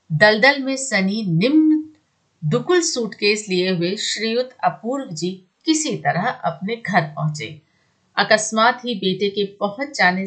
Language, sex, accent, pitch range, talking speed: Hindi, female, native, 165-225 Hz, 130 wpm